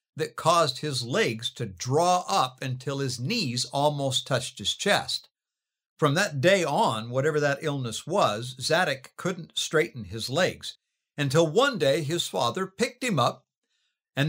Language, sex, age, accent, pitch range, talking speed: English, male, 60-79, American, 120-160 Hz, 150 wpm